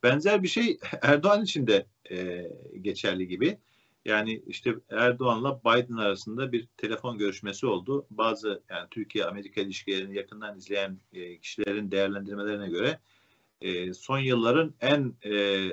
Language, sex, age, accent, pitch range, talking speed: Turkish, male, 50-69, native, 95-120 Hz, 125 wpm